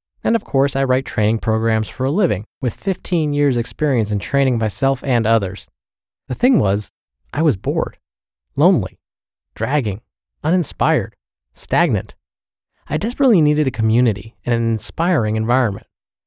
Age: 20-39